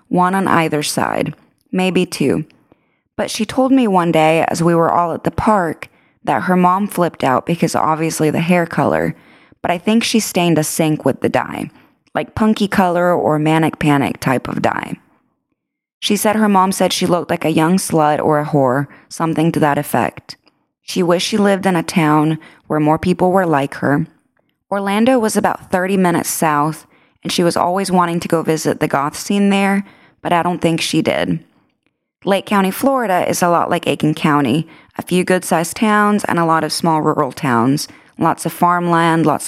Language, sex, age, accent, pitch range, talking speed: English, female, 20-39, American, 155-195 Hz, 190 wpm